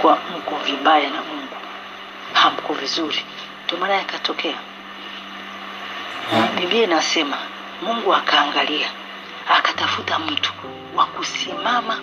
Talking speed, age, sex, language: 85 wpm, 40-59, female, English